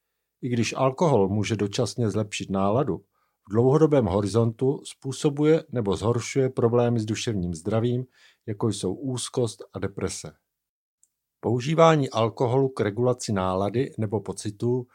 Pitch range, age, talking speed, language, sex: 105-135 Hz, 50-69, 115 wpm, Czech, male